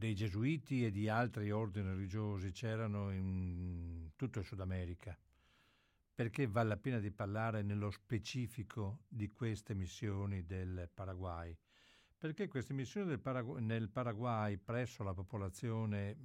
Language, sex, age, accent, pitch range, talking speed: Italian, male, 60-79, native, 100-125 Hz, 135 wpm